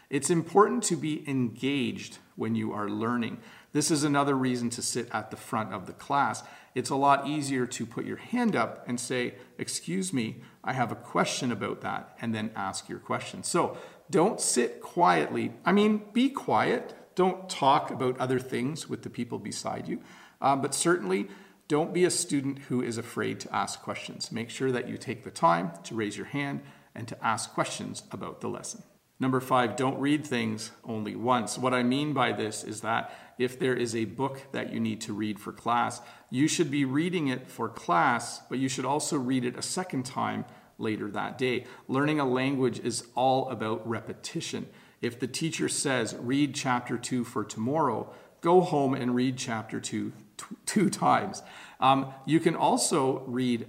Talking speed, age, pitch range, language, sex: 190 wpm, 40-59, 120-145 Hz, English, male